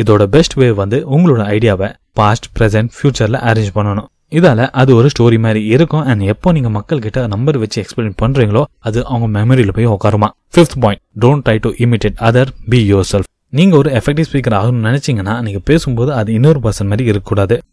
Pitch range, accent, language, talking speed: 105-135 Hz, native, Tamil, 165 wpm